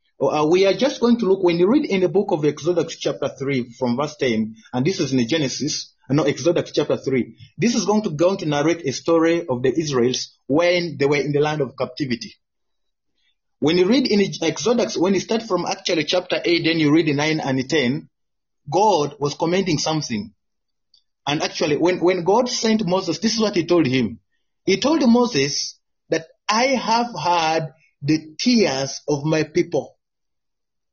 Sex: male